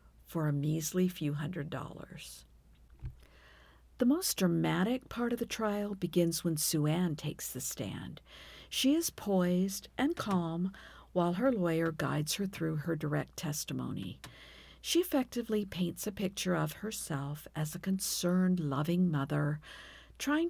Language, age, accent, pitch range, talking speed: English, 50-69, American, 150-195 Hz, 140 wpm